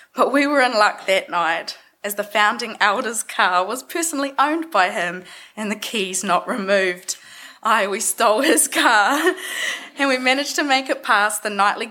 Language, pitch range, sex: English, 190-240 Hz, female